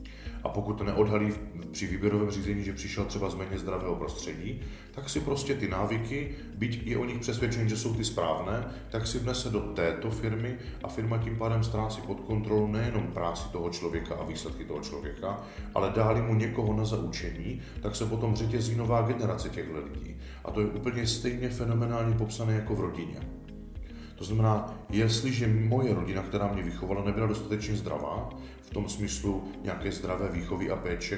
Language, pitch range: Czech, 95-115 Hz